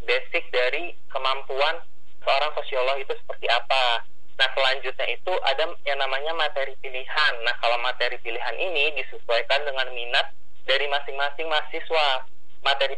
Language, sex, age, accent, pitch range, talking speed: Indonesian, male, 30-49, native, 125-145 Hz, 130 wpm